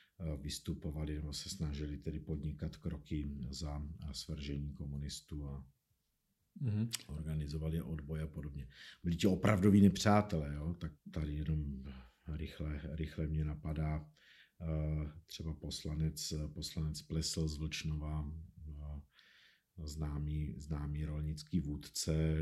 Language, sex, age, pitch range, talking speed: Czech, male, 50-69, 75-80 Hz, 100 wpm